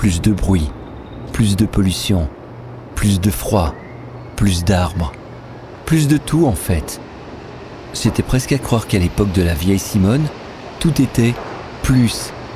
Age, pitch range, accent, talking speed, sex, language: 50-69, 95-120 Hz, French, 140 wpm, male, French